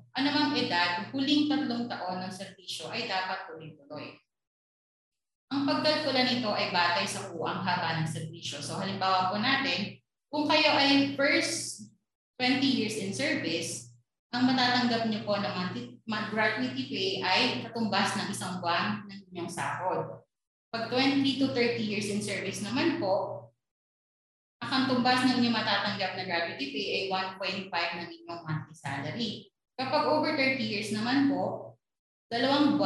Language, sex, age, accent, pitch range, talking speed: Filipino, female, 20-39, native, 175-255 Hz, 140 wpm